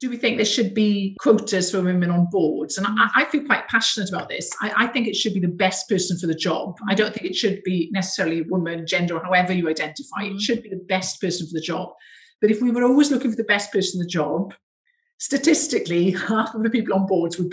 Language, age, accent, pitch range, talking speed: English, 50-69, British, 175-215 Hz, 255 wpm